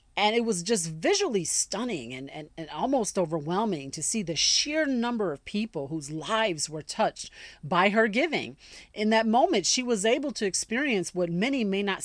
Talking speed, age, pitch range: 185 wpm, 40-59, 175-230 Hz